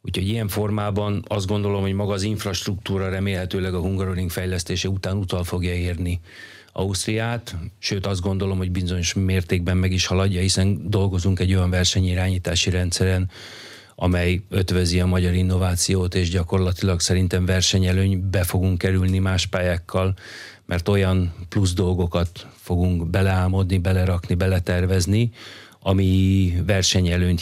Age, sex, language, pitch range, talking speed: 40-59, male, Hungarian, 90-100 Hz, 125 wpm